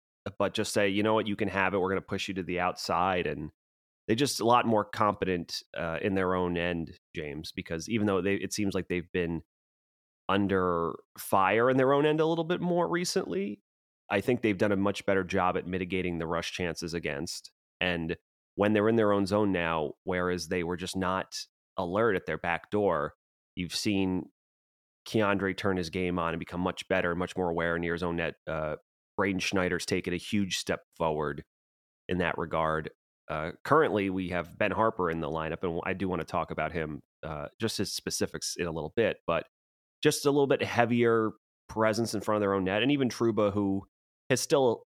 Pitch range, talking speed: 85-105 Hz, 210 wpm